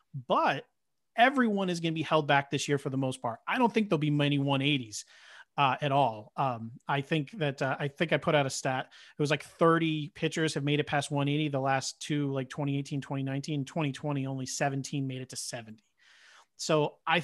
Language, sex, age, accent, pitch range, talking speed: English, male, 30-49, American, 140-180 Hz, 210 wpm